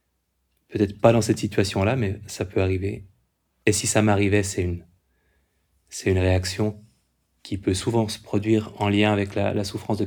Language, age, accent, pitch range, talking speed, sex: French, 30-49, French, 95-115 Hz, 180 wpm, male